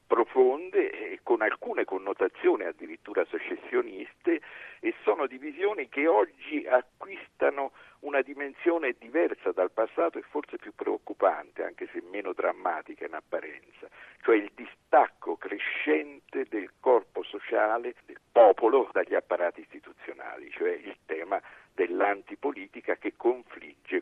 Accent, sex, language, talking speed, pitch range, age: native, male, Italian, 115 wpm, 350-415 Hz, 60-79